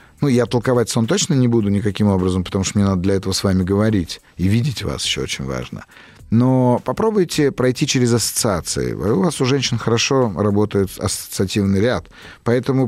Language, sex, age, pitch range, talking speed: Russian, male, 30-49, 100-135 Hz, 175 wpm